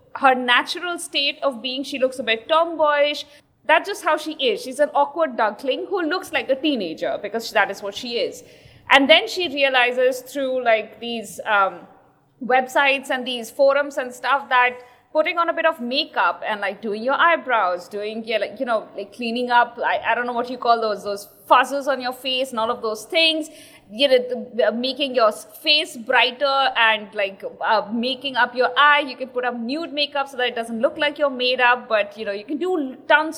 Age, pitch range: 20-39, 245-305 Hz